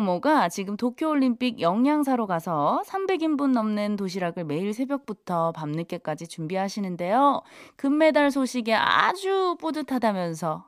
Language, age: Korean, 20-39